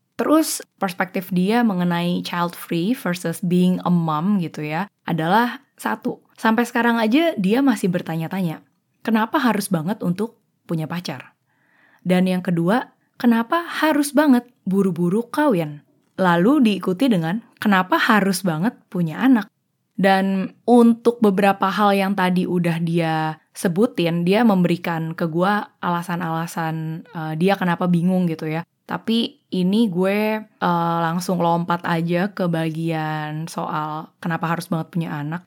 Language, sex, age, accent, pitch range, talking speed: Indonesian, female, 20-39, native, 170-220 Hz, 130 wpm